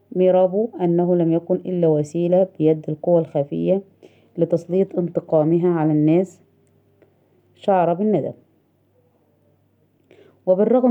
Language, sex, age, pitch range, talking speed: Arabic, female, 20-39, 160-190 Hz, 90 wpm